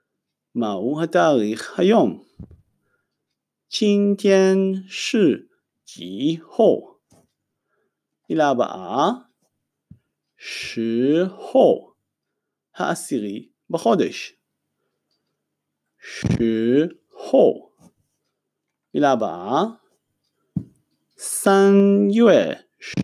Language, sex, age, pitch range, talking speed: Hebrew, male, 50-69, 145-215 Hz, 45 wpm